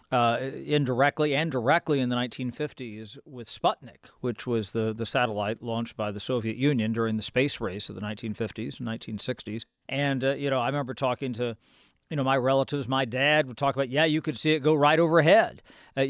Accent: American